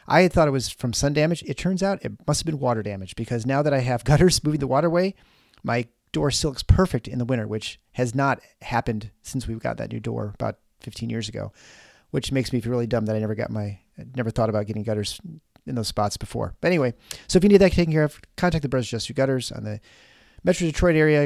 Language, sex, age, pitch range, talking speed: English, male, 40-59, 110-155 Hz, 255 wpm